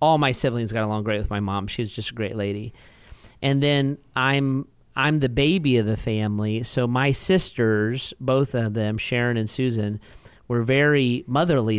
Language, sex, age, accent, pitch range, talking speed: English, male, 40-59, American, 115-135 Hz, 185 wpm